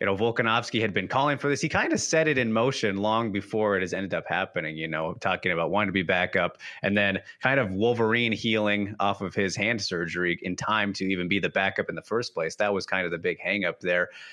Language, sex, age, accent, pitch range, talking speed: English, male, 30-49, American, 95-120 Hz, 255 wpm